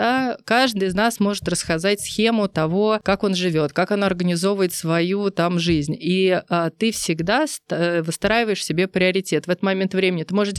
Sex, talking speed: female, 175 wpm